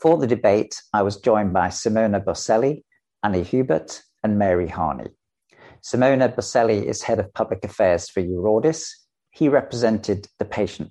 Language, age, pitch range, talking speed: Finnish, 50-69, 90-125 Hz, 150 wpm